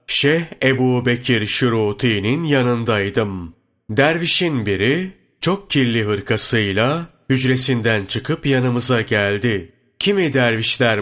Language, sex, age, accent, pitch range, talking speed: Turkish, male, 30-49, native, 110-140 Hz, 80 wpm